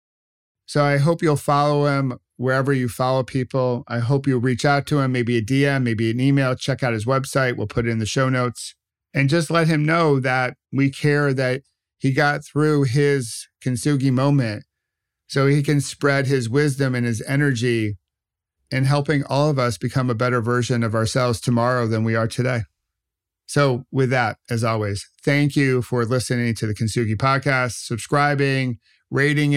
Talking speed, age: 180 wpm, 50-69